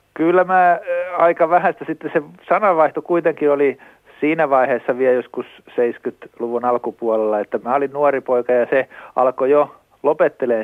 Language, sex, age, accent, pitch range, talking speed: Finnish, male, 50-69, native, 115-140 Hz, 140 wpm